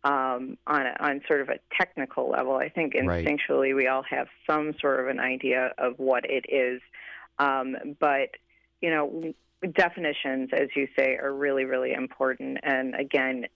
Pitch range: 130-155 Hz